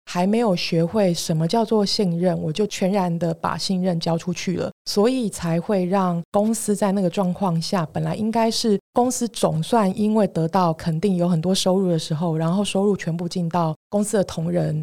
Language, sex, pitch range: Chinese, female, 170-210 Hz